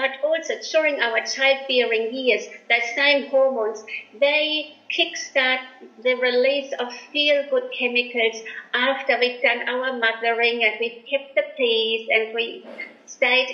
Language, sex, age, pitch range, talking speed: English, female, 50-69, 230-275 Hz, 130 wpm